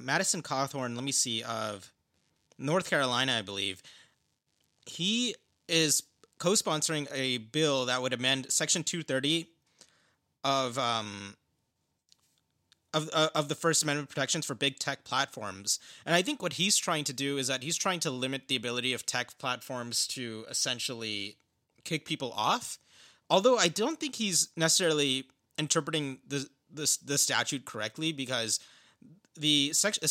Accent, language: American, English